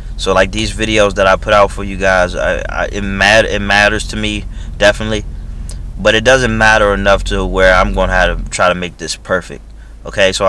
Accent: American